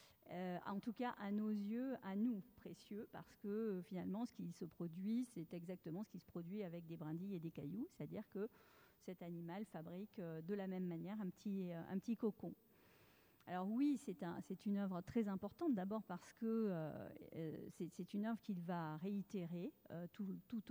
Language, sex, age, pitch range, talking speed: French, female, 40-59, 175-210 Hz, 190 wpm